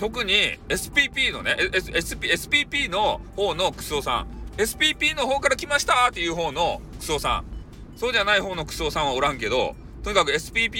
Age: 40-59